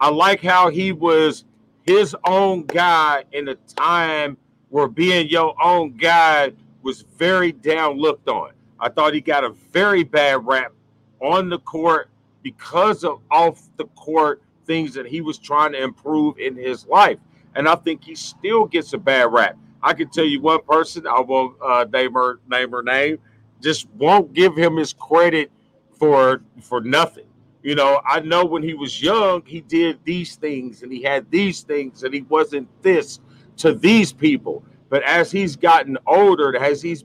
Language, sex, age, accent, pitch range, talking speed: English, male, 40-59, American, 135-170 Hz, 175 wpm